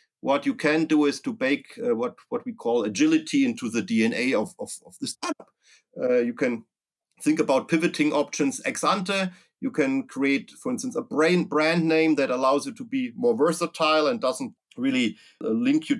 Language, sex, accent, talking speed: English, male, German, 190 wpm